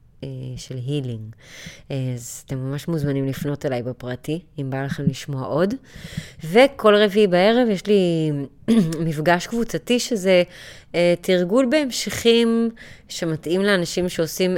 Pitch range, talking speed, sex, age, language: 145-185 Hz, 110 wpm, female, 20-39, Hebrew